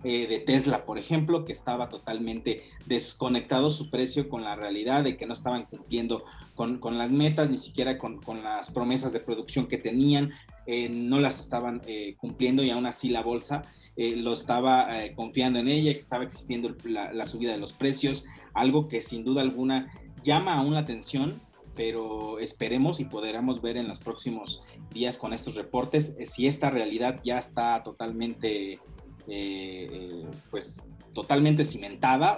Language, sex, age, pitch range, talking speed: Spanish, male, 30-49, 115-145 Hz, 170 wpm